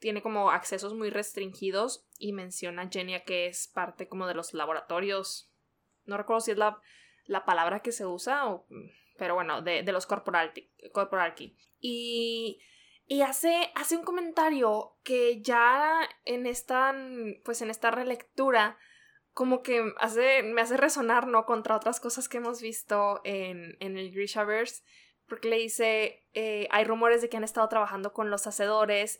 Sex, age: female, 20-39